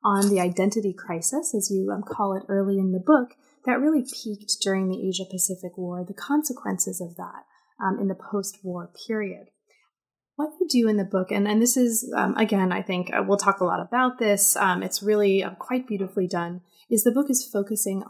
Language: English